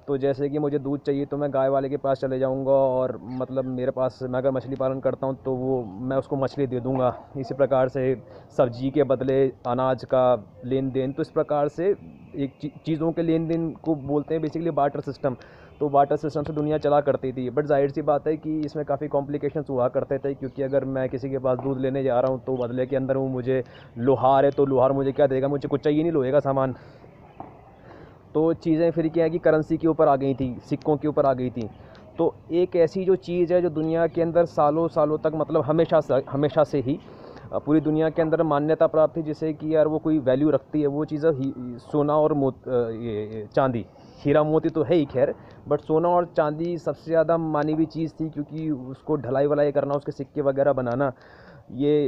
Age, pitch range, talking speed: 20-39, 130-155 Hz, 220 wpm